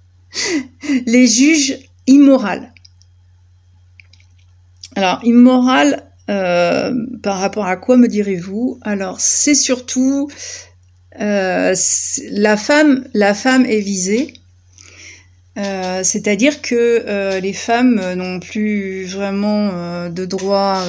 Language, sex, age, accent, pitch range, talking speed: French, female, 50-69, French, 180-240 Hz, 100 wpm